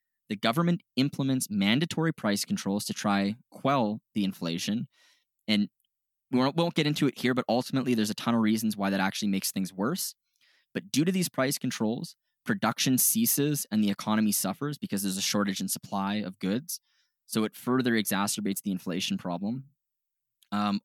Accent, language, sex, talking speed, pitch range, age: American, English, male, 170 wpm, 105-145 Hz, 20-39